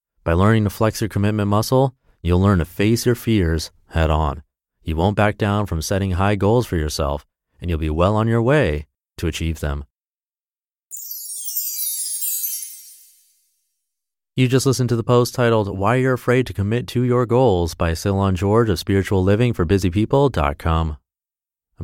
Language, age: English, 30-49